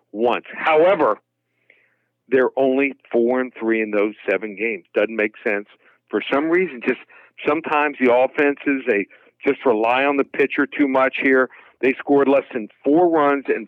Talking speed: 160 wpm